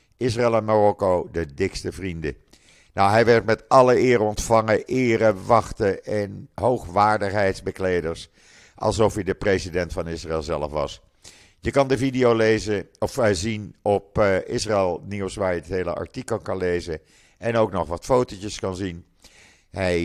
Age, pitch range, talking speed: 50-69, 90-110 Hz, 155 wpm